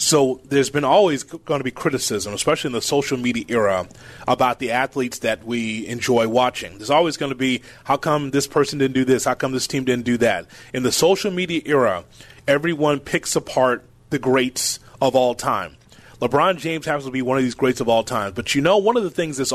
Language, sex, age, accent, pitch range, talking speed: English, male, 30-49, American, 130-160 Hz, 225 wpm